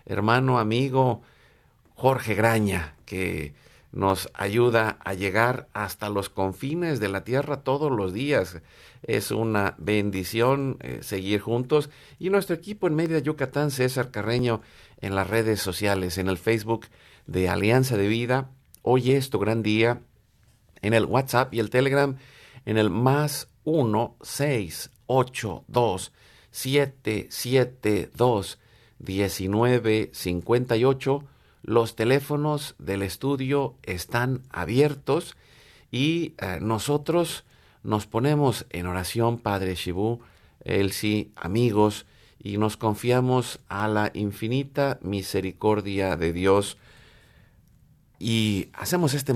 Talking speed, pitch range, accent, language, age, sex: 110 wpm, 100-130 Hz, Mexican, Spanish, 50-69, male